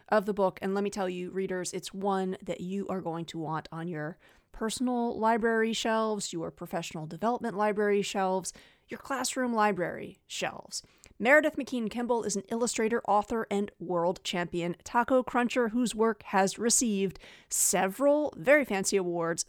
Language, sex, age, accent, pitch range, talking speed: English, female, 30-49, American, 185-245 Hz, 155 wpm